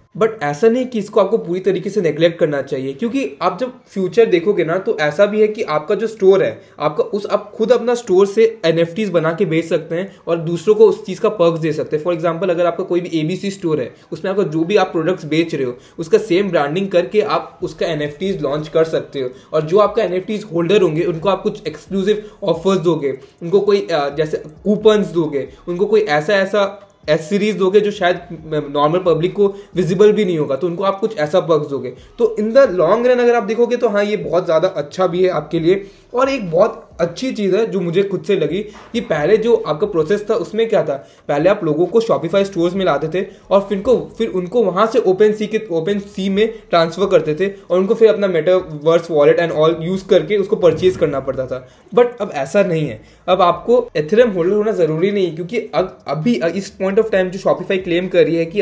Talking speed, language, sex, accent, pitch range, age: 225 wpm, Hindi, male, native, 165-210 Hz, 20-39